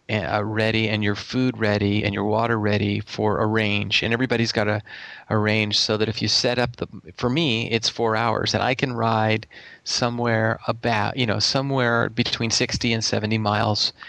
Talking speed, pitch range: 190 wpm, 110-125 Hz